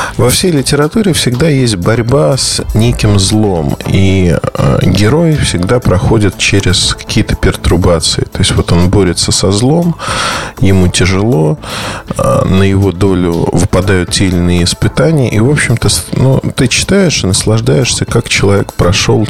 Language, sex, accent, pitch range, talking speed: Russian, male, native, 100-130 Hz, 145 wpm